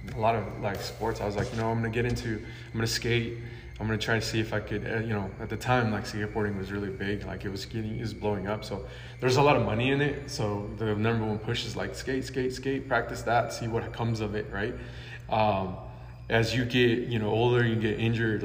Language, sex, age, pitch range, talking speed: English, male, 20-39, 100-115 Hz, 255 wpm